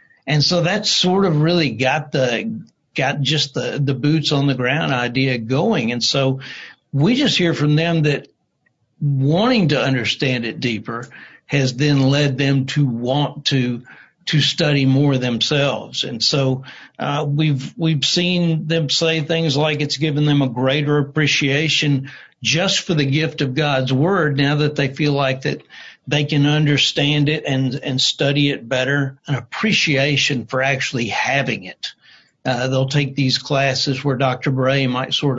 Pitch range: 130-155 Hz